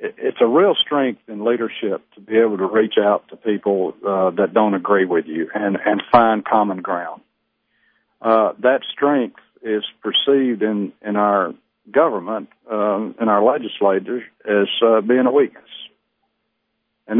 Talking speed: 155 wpm